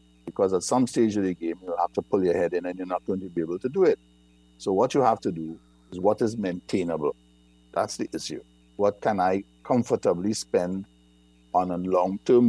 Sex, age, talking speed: male, 60-79, 215 wpm